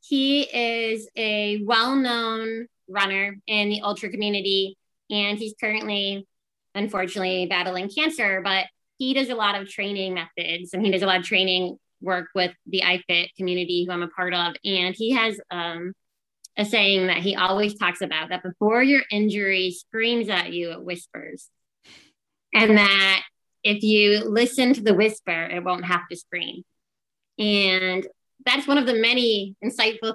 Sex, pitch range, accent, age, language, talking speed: female, 180-220 Hz, American, 20-39, English, 160 wpm